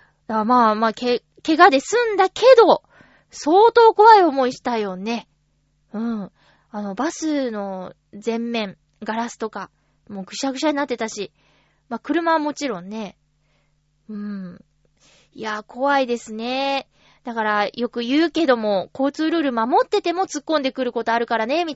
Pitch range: 215-320 Hz